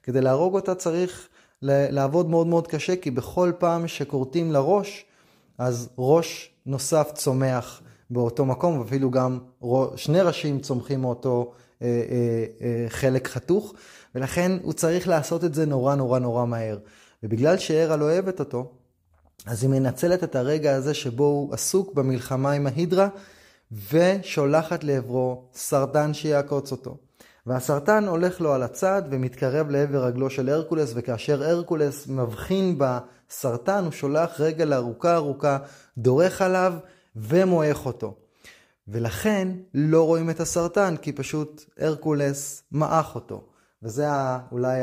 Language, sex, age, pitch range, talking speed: Hebrew, male, 20-39, 125-160 Hz, 125 wpm